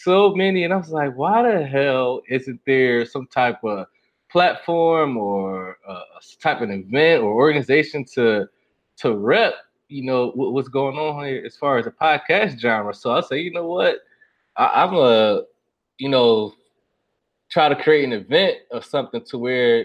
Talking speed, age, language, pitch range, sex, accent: 180 wpm, 20-39, English, 125-160 Hz, male, American